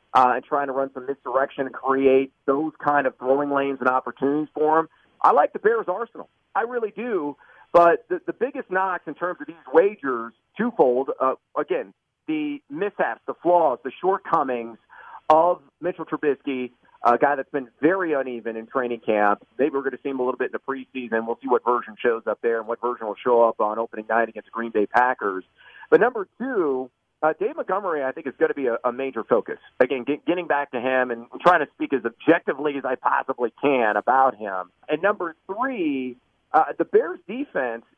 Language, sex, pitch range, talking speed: English, male, 125-165 Hz, 205 wpm